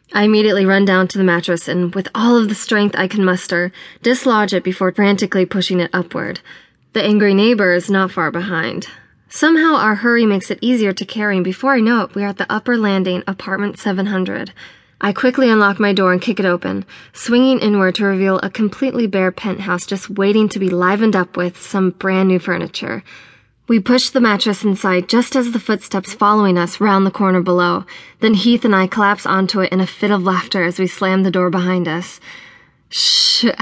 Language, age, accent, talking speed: English, 20-39, American, 205 wpm